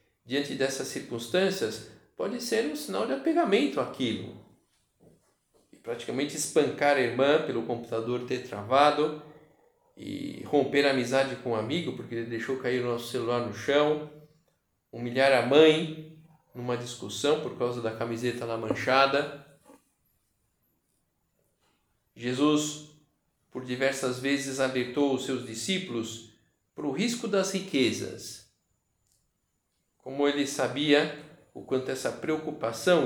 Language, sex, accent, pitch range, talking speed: Portuguese, male, Brazilian, 120-155 Hz, 120 wpm